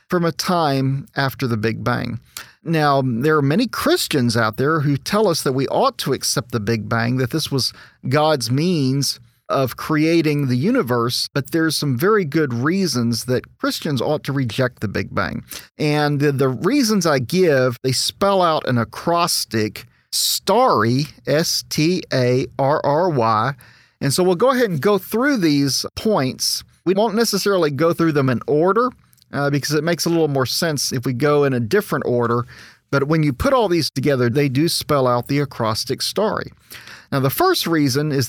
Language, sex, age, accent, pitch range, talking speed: English, male, 40-59, American, 130-170 Hz, 175 wpm